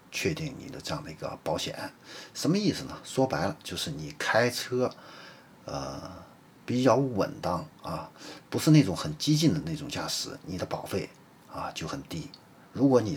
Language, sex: Chinese, male